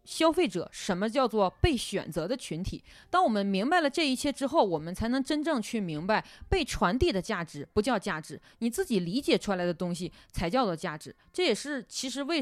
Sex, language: female, Chinese